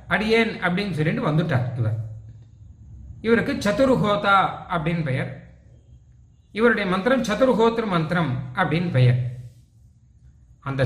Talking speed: 90 wpm